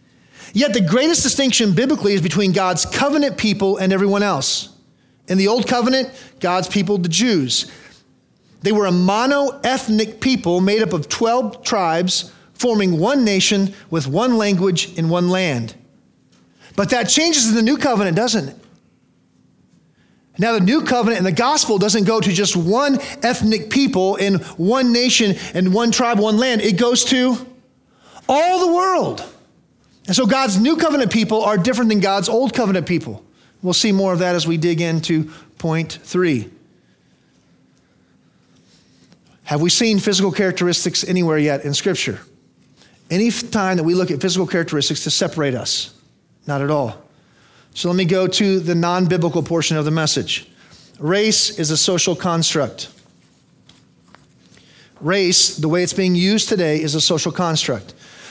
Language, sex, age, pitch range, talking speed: English, male, 40-59, 170-230 Hz, 155 wpm